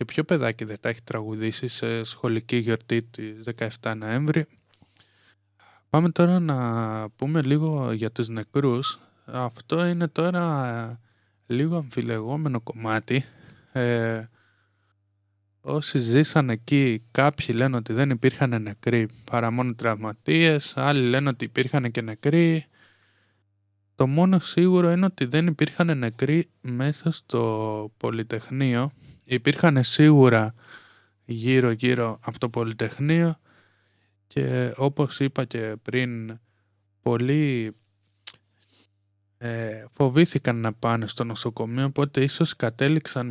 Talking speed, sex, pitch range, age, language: 105 wpm, male, 110-140 Hz, 20-39, Greek